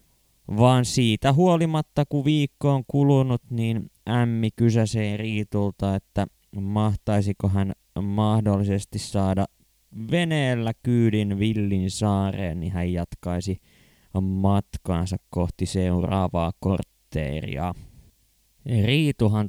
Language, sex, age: Finnish, male, 20-39